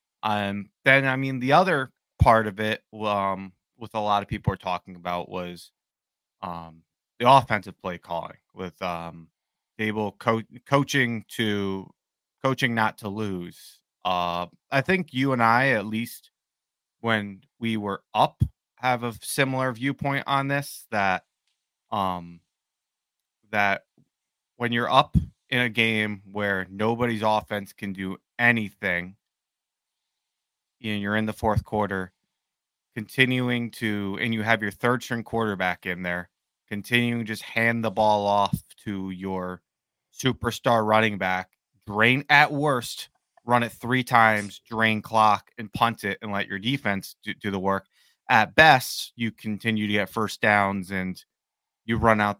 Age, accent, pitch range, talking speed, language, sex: 30-49, American, 100-120 Hz, 145 wpm, English, male